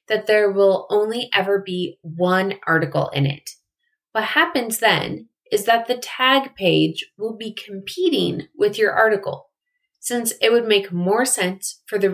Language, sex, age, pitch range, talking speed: English, female, 30-49, 175-240 Hz, 160 wpm